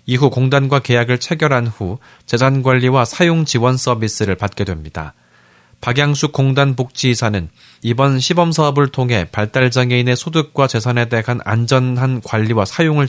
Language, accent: Korean, native